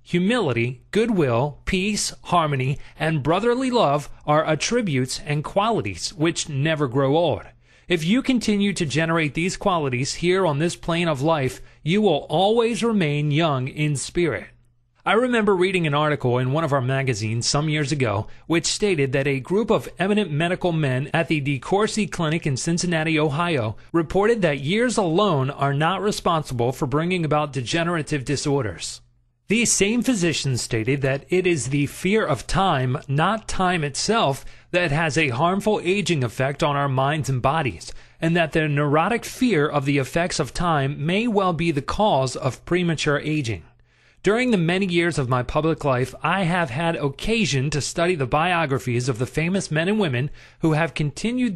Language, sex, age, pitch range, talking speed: English, male, 30-49, 135-180 Hz, 170 wpm